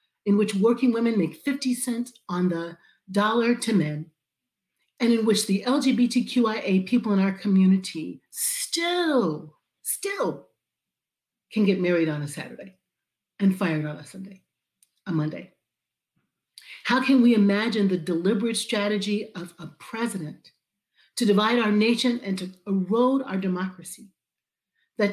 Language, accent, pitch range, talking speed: English, American, 185-235 Hz, 135 wpm